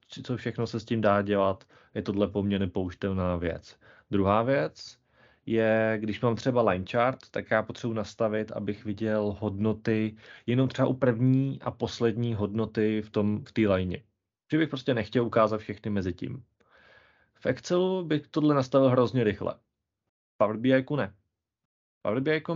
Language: Czech